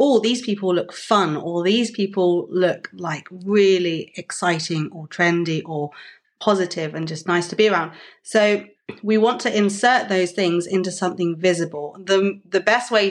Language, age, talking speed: English, 30-49, 165 wpm